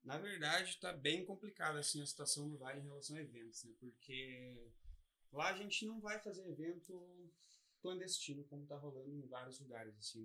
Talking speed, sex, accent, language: 180 wpm, male, Brazilian, Portuguese